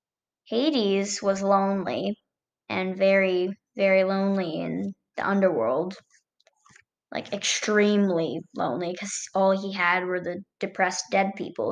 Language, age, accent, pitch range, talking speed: English, 10-29, American, 190-235 Hz, 115 wpm